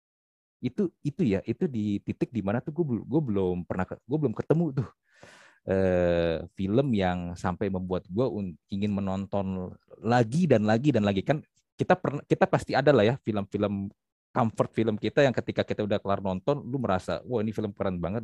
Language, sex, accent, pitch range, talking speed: Indonesian, male, native, 90-140 Hz, 180 wpm